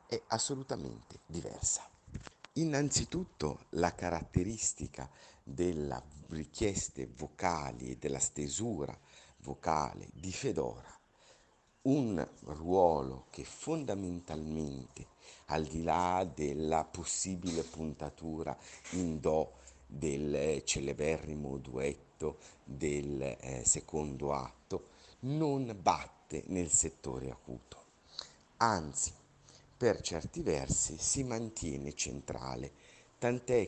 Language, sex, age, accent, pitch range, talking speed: Italian, male, 50-69, native, 70-95 Hz, 85 wpm